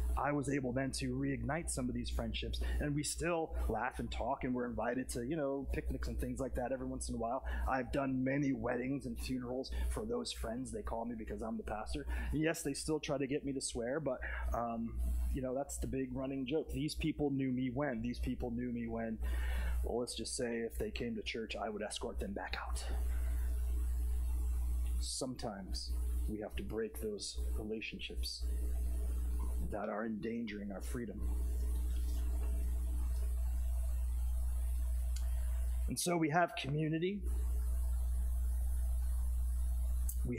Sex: male